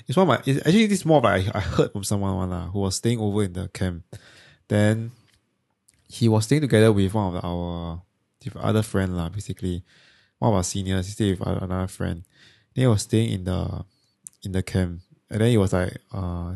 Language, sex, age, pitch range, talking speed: English, male, 20-39, 95-115 Hz, 225 wpm